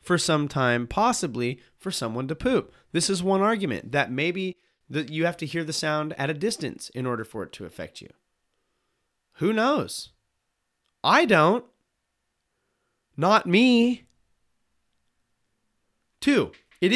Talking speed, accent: 140 wpm, American